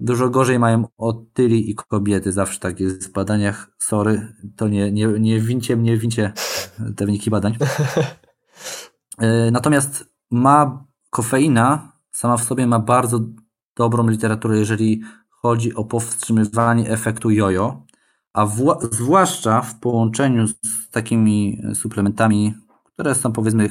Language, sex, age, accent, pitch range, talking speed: Polish, male, 20-39, native, 105-125 Hz, 125 wpm